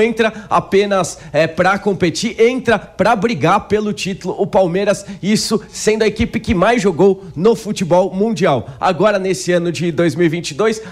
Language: English